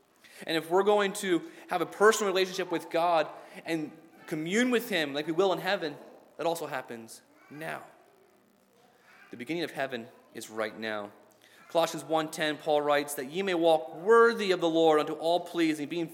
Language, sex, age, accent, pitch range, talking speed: English, male, 30-49, American, 130-180 Hz, 175 wpm